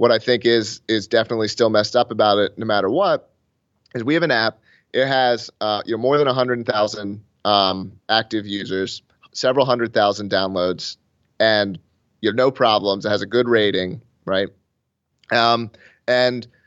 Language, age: English, 30-49